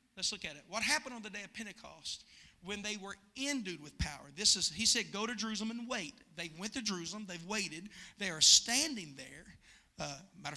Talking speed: 215 wpm